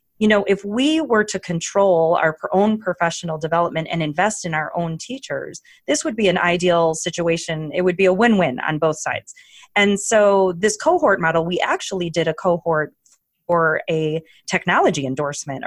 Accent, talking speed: American, 175 wpm